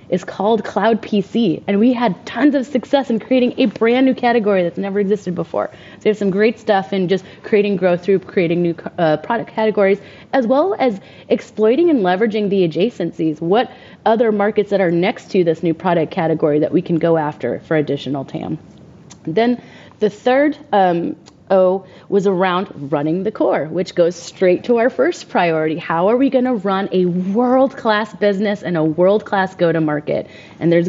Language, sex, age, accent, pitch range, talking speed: English, female, 30-49, American, 170-225 Hz, 180 wpm